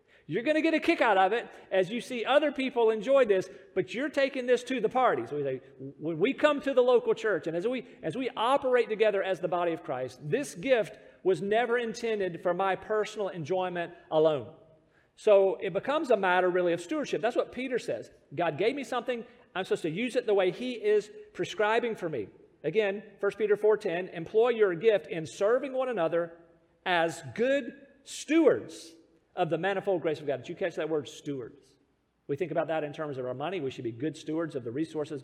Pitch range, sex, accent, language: 160-245 Hz, male, American, English